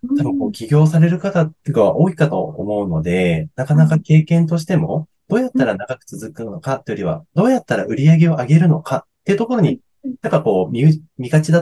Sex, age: male, 20-39